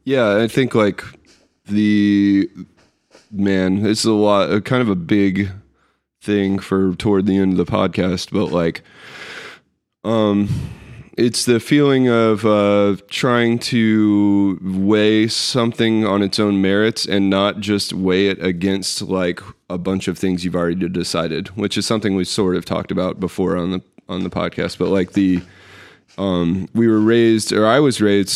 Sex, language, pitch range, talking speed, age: male, English, 95-110 Hz, 160 wpm, 20-39